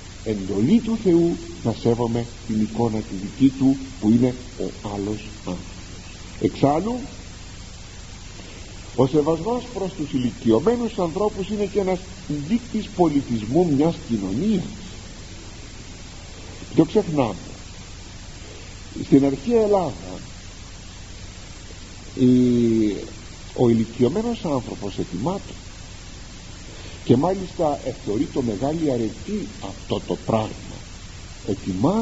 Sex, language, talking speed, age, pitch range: male, Greek, 90 wpm, 50-69, 95-140 Hz